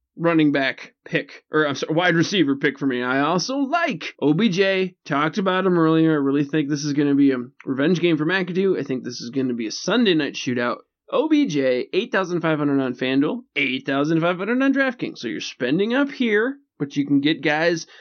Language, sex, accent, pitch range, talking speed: English, male, American, 140-205 Hz, 200 wpm